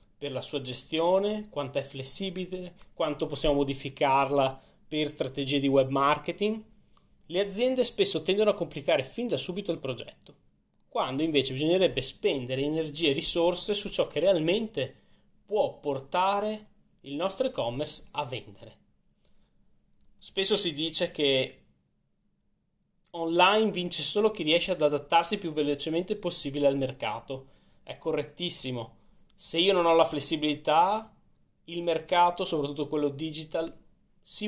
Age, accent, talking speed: 20-39, native, 130 wpm